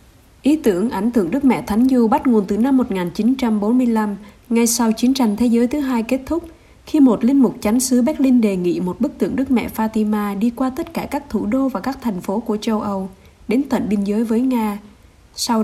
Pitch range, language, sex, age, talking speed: 210-255 Hz, Vietnamese, female, 20-39, 225 wpm